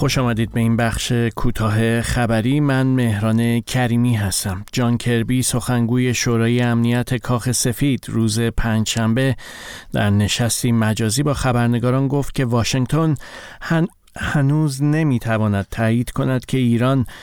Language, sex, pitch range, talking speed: Persian, male, 110-130 Hz, 120 wpm